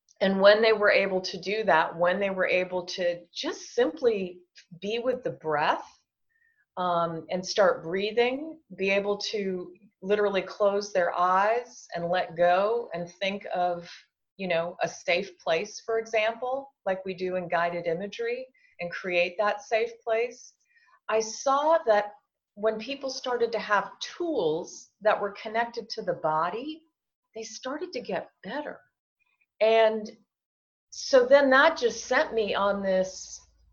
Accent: American